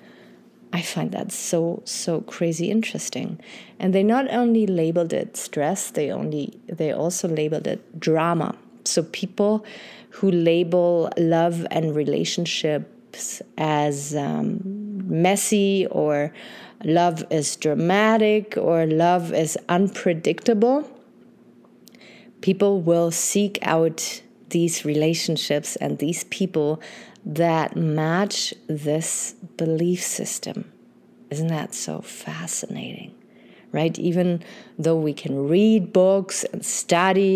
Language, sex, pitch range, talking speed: English, female, 160-205 Hz, 105 wpm